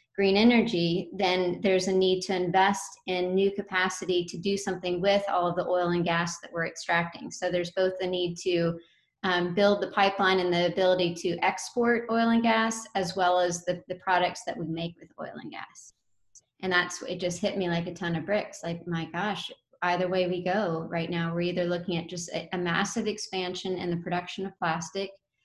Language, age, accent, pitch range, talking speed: English, 30-49, American, 170-195 Hz, 210 wpm